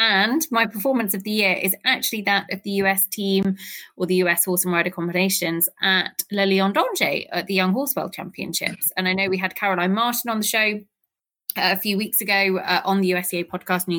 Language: English